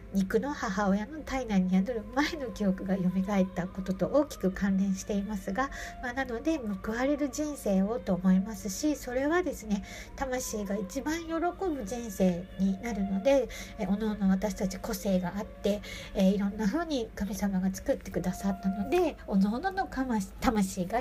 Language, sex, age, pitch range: Japanese, female, 60-79, 190-250 Hz